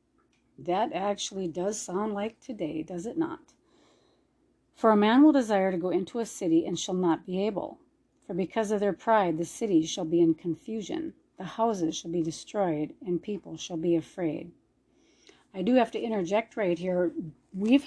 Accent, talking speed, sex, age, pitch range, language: American, 180 wpm, female, 40-59, 175-225 Hz, English